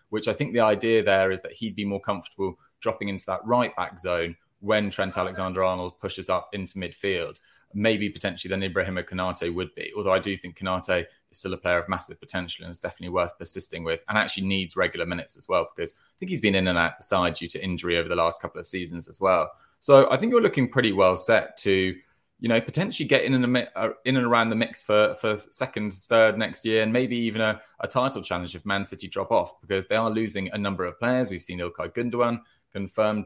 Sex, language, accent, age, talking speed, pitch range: male, English, British, 20-39, 230 wpm, 95-115 Hz